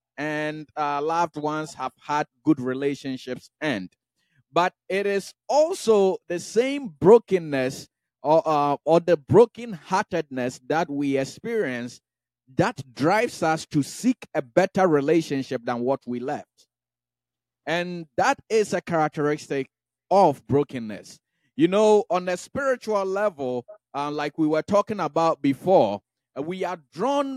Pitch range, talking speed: 135-185 Hz, 130 wpm